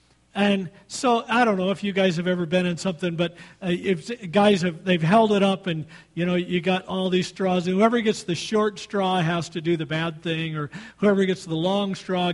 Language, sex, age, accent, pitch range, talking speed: English, male, 50-69, American, 160-220 Hz, 235 wpm